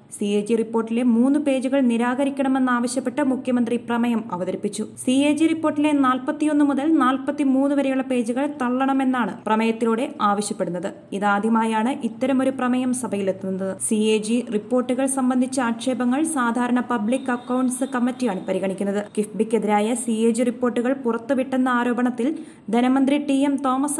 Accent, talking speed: native, 120 wpm